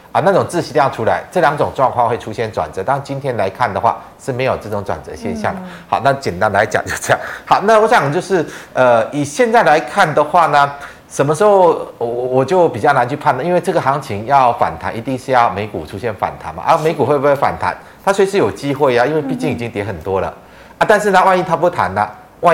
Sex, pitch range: male, 115-170 Hz